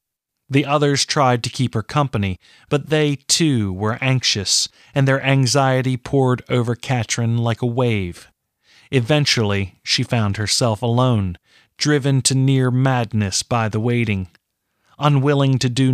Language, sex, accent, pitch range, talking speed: English, male, American, 110-135 Hz, 135 wpm